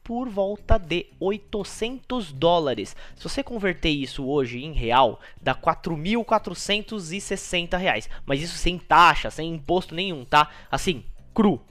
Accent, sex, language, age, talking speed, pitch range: Brazilian, male, Portuguese, 20-39, 130 wpm, 160-225 Hz